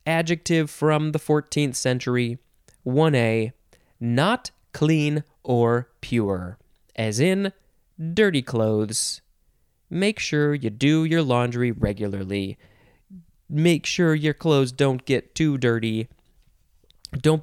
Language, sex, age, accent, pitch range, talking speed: English, male, 20-39, American, 115-155 Hz, 105 wpm